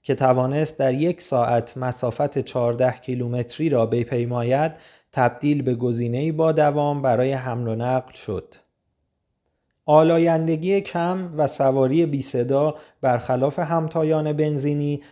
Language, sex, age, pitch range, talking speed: Persian, male, 30-49, 125-155 Hz, 115 wpm